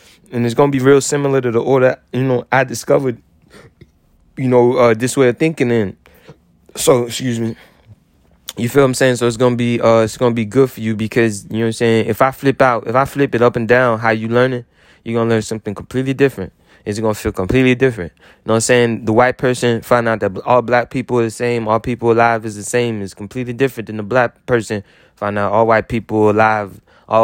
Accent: American